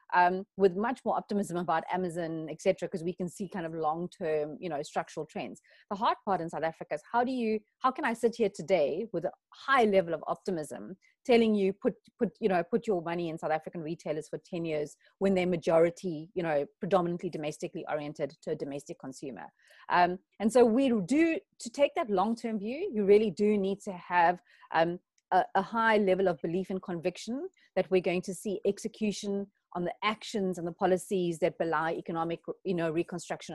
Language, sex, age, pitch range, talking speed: English, female, 30-49, 170-210 Hz, 200 wpm